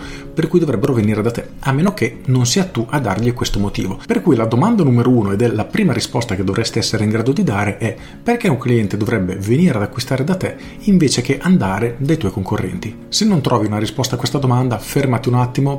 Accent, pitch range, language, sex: native, 110-140 Hz, Italian, male